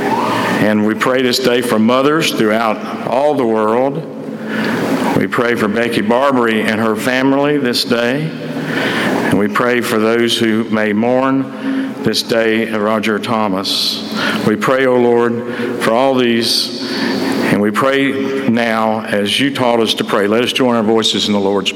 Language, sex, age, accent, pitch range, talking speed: English, male, 50-69, American, 105-125 Hz, 160 wpm